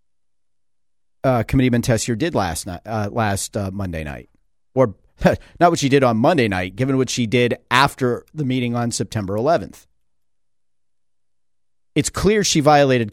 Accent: American